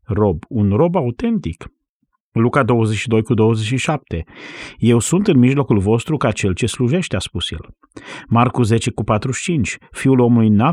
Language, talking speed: Romanian, 150 wpm